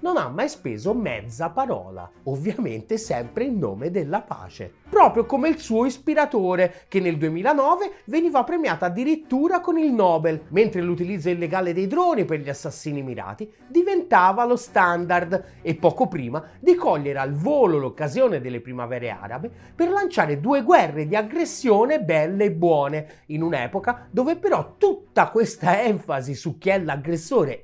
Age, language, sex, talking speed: 30-49, Italian, male, 150 wpm